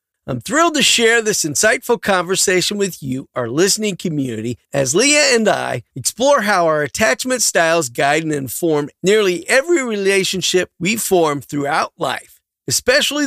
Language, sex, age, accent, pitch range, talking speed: English, male, 40-59, American, 145-235 Hz, 145 wpm